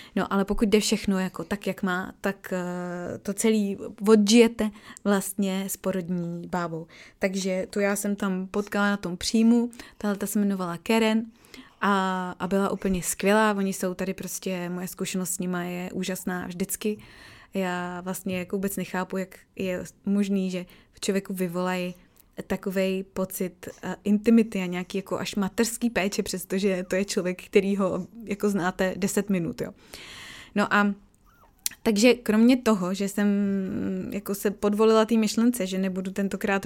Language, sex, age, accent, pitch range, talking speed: Czech, female, 20-39, native, 185-205 Hz, 150 wpm